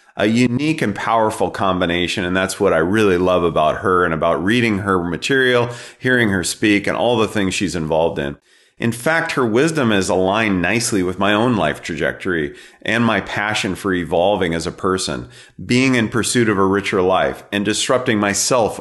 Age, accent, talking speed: 40-59, American, 185 wpm